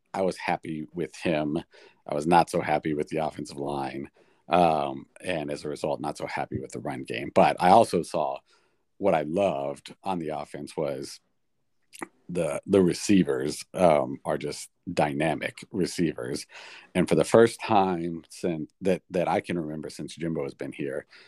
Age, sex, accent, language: 50-69, male, American, English